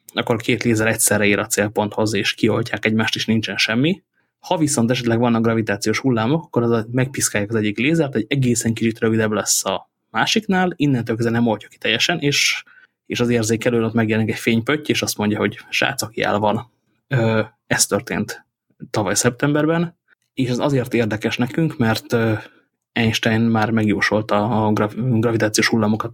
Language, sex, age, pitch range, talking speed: English, male, 20-39, 110-120 Hz, 155 wpm